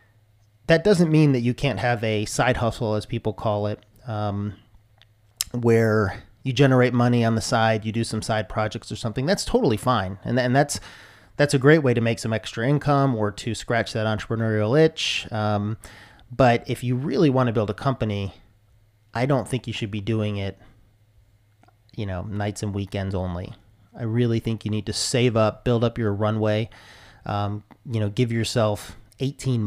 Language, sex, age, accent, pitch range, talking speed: English, male, 30-49, American, 105-125 Hz, 190 wpm